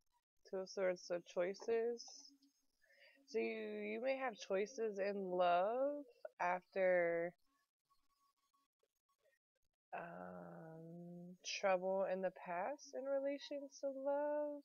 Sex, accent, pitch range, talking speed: female, American, 185-290 Hz, 90 wpm